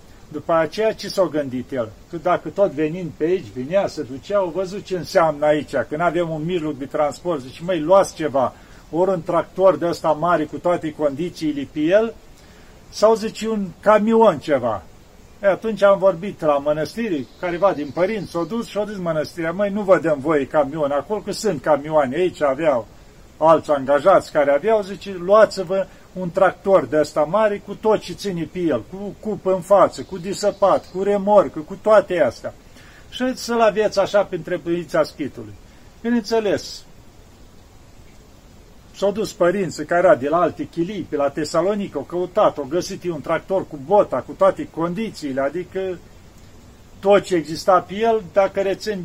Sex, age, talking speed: male, 40-59, 175 wpm